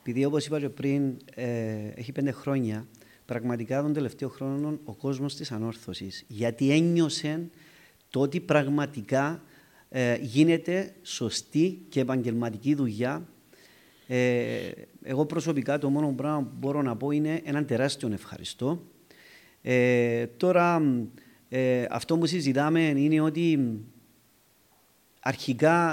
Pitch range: 130-165 Hz